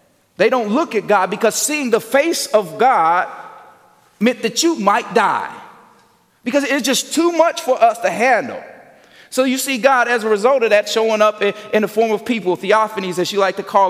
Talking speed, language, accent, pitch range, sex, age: 205 wpm, English, American, 205-265 Hz, male, 30-49